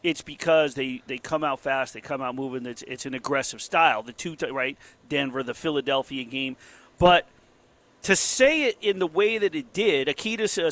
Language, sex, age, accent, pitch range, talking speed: English, male, 40-59, American, 160-230 Hz, 195 wpm